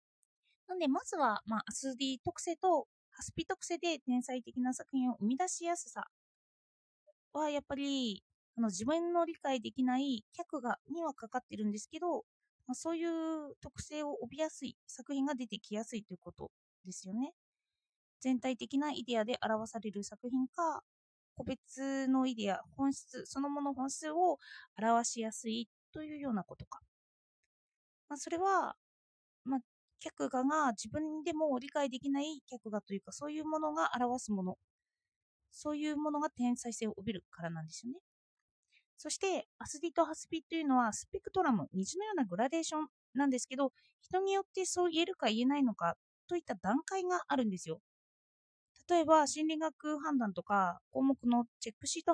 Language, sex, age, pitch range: Japanese, female, 20-39, 230-315 Hz